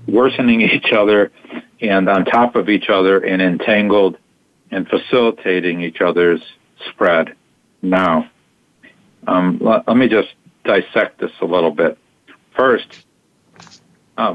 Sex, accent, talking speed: male, American, 120 wpm